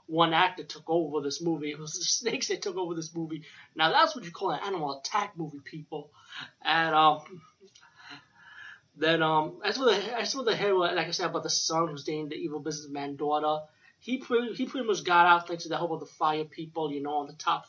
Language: English